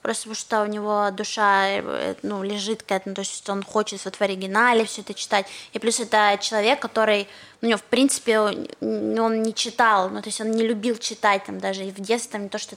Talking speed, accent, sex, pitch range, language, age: 230 wpm, native, female, 205-245 Hz, Russian, 20-39